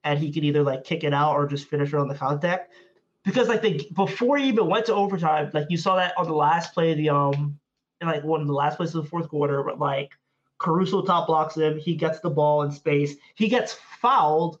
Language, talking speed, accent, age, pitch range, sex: English, 255 wpm, American, 20-39, 145-175 Hz, male